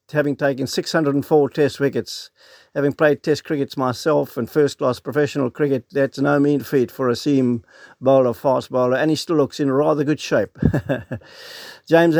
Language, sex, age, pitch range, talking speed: English, male, 60-79, 135-155 Hz, 165 wpm